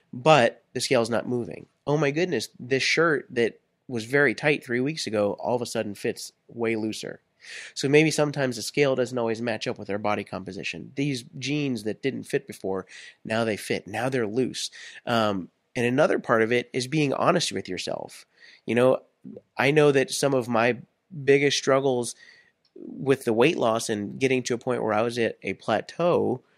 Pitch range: 115-140 Hz